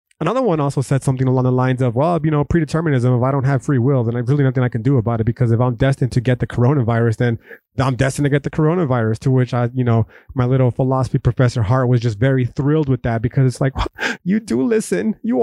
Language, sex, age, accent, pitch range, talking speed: English, male, 30-49, American, 125-155 Hz, 255 wpm